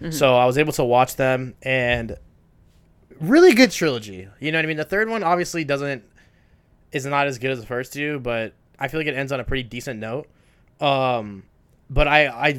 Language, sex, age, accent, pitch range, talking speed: English, male, 20-39, American, 120-150 Hz, 210 wpm